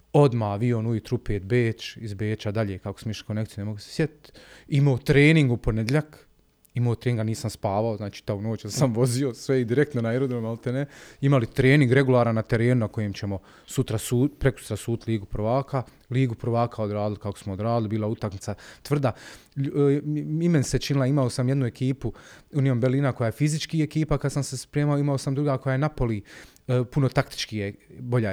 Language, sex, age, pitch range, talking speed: Croatian, male, 30-49, 110-140 Hz, 180 wpm